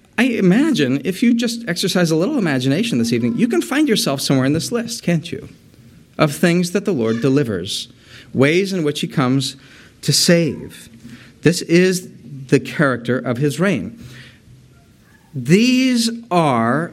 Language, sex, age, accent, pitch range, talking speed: English, male, 40-59, American, 120-180 Hz, 150 wpm